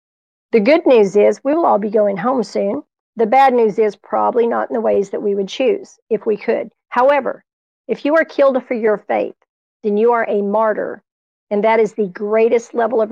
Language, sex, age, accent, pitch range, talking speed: English, female, 50-69, American, 205-245 Hz, 215 wpm